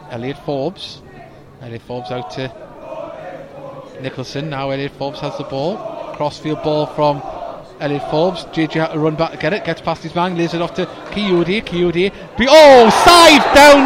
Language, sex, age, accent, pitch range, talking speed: English, male, 30-49, British, 130-220 Hz, 170 wpm